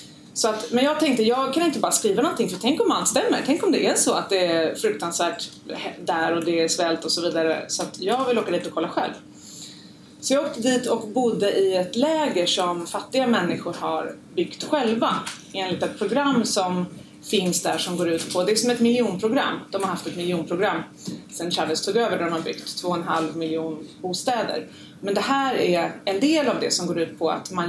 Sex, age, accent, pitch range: female, 30-49, native, 170-230 Hz